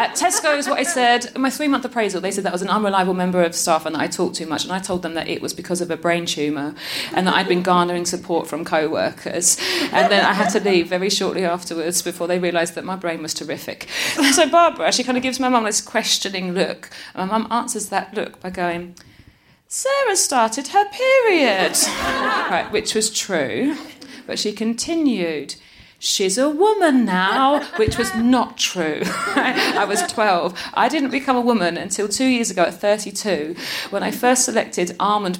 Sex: female